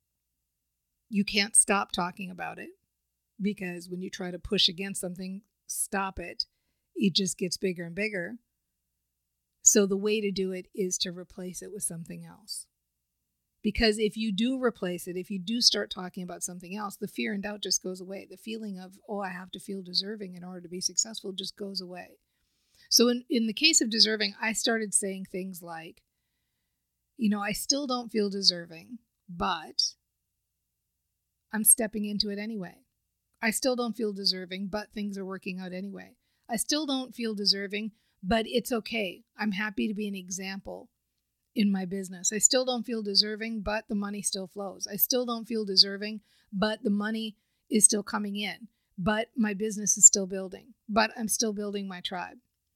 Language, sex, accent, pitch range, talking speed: English, female, American, 185-220 Hz, 180 wpm